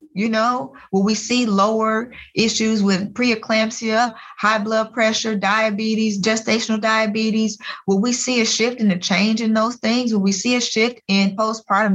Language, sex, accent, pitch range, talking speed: English, female, American, 190-230 Hz, 165 wpm